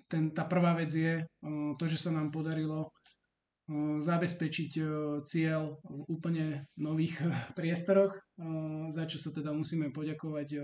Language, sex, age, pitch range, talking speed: Slovak, male, 20-39, 150-170 Hz, 125 wpm